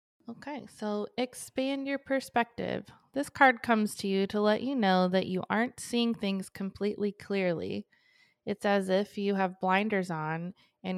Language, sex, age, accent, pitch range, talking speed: English, female, 20-39, American, 175-210 Hz, 160 wpm